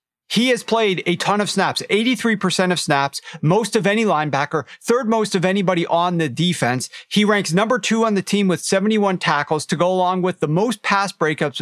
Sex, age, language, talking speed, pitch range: male, 40-59, English, 200 wpm, 155-185 Hz